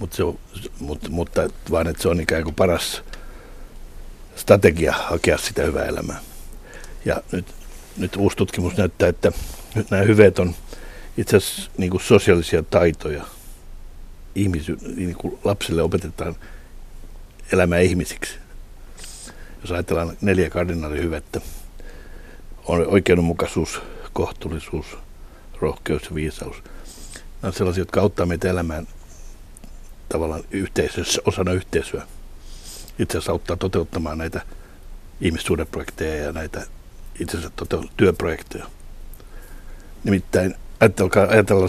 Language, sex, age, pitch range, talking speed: Finnish, male, 60-79, 80-95 Hz, 100 wpm